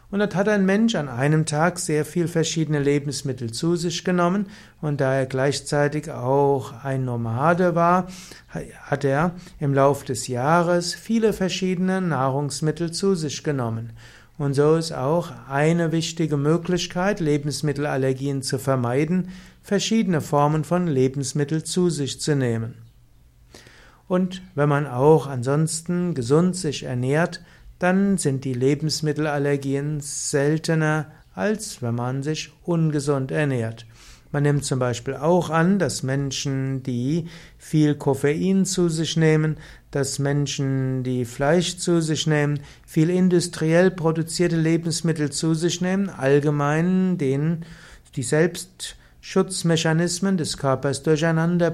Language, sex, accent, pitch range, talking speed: German, male, German, 140-170 Hz, 125 wpm